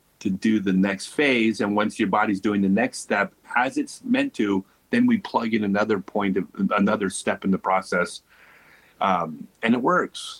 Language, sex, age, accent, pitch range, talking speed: Swedish, male, 30-49, American, 95-115 Hz, 190 wpm